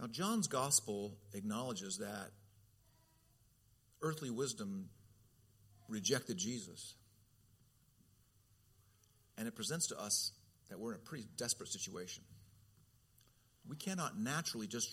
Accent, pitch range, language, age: American, 110-150 Hz, English, 50-69